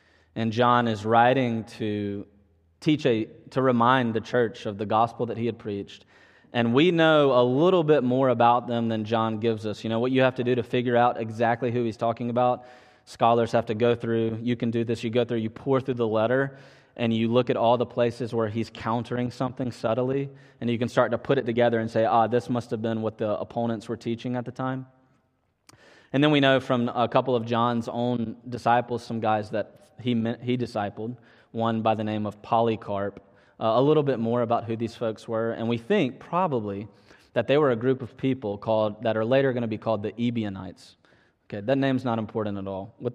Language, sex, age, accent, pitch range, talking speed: English, male, 20-39, American, 115-125 Hz, 225 wpm